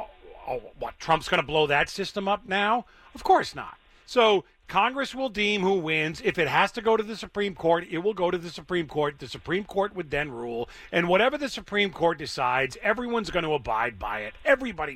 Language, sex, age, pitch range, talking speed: English, male, 40-59, 145-220 Hz, 215 wpm